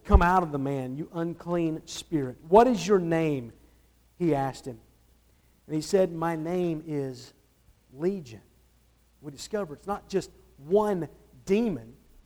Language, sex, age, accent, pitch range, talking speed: English, male, 50-69, American, 150-215 Hz, 140 wpm